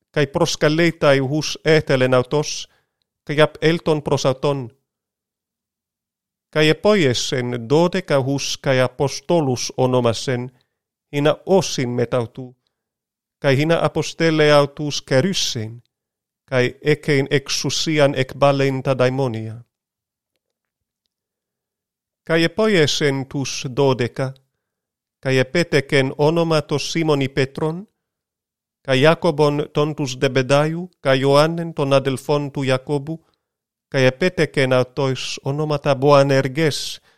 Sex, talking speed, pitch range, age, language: male, 85 wpm, 130-155 Hz, 40-59, Greek